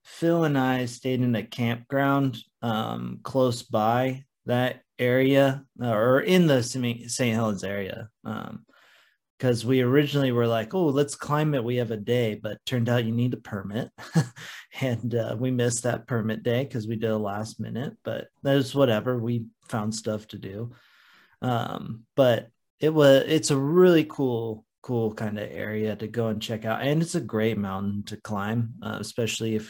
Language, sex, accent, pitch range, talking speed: English, male, American, 110-130 Hz, 180 wpm